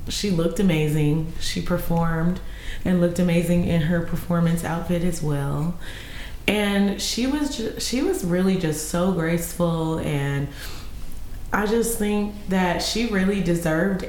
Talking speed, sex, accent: 130 wpm, female, American